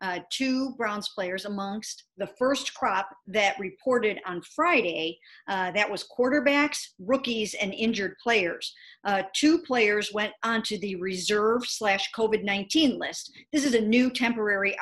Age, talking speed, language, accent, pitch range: 50-69, 140 wpm, English, American, 195-235 Hz